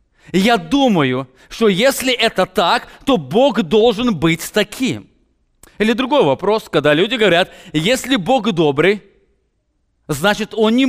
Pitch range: 150-220 Hz